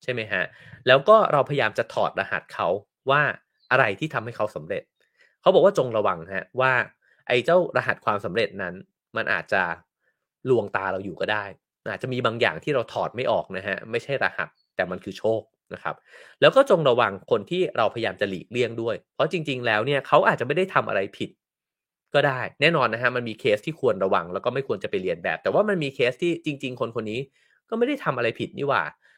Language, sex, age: English, male, 30-49